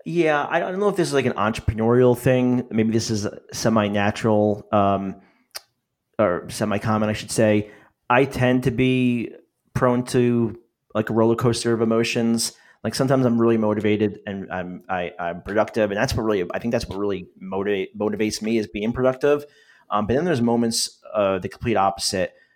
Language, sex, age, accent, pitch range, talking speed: English, male, 30-49, American, 95-120 Hz, 180 wpm